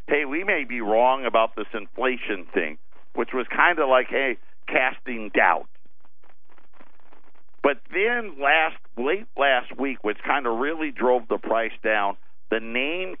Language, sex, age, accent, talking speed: English, male, 50-69, American, 150 wpm